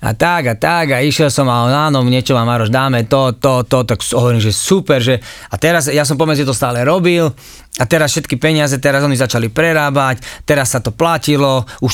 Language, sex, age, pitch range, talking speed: Slovak, male, 30-49, 130-175 Hz, 220 wpm